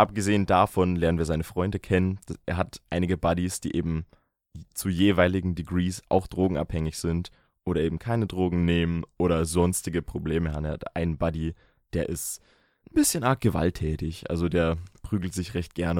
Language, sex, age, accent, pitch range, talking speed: German, male, 20-39, German, 85-100 Hz, 165 wpm